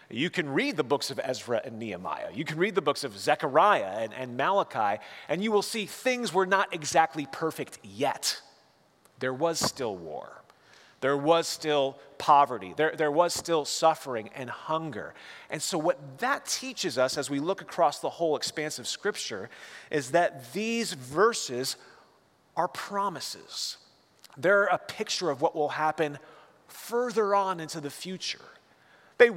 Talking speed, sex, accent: 160 wpm, male, American